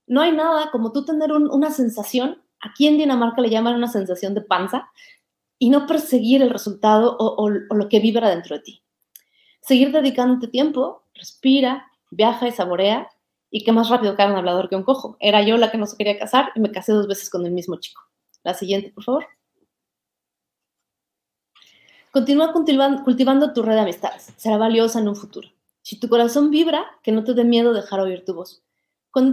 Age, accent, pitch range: 30-49, Mexican, 210-265 Hz